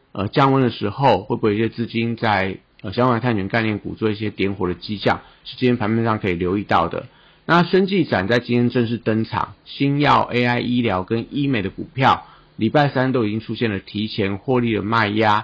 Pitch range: 100-120 Hz